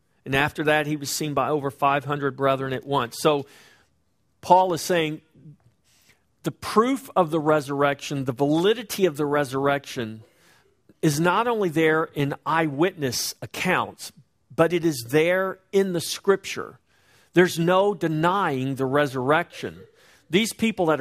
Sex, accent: male, American